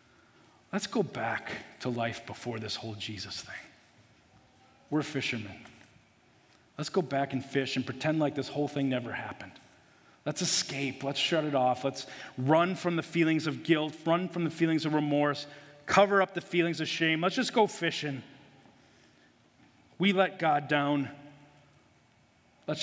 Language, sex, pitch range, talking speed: English, male, 130-185 Hz, 155 wpm